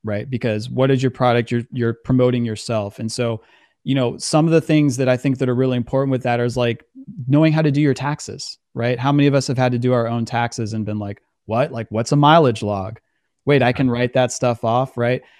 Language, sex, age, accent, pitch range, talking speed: English, male, 30-49, American, 120-145 Hz, 250 wpm